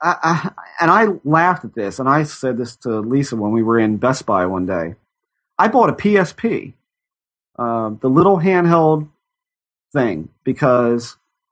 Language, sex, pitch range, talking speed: English, male, 125-170 Hz, 150 wpm